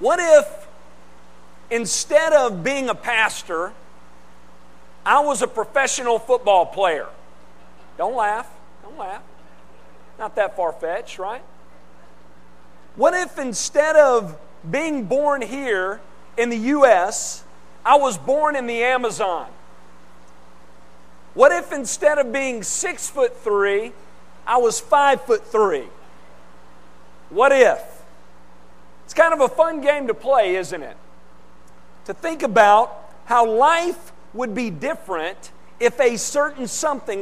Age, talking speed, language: 40-59, 115 wpm, English